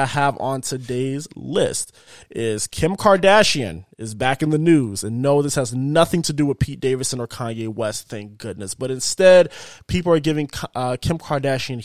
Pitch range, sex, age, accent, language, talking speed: 120-150 Hz, male, 20-39, American, English, 180 wpm